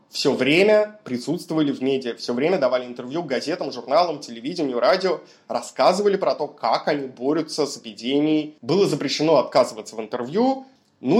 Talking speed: 145 wpm